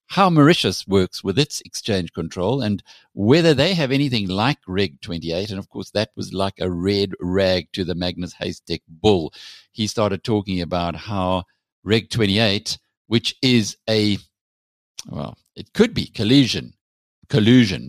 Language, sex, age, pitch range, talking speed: English, male, 60-79, 90-120 Hz, 150 wpm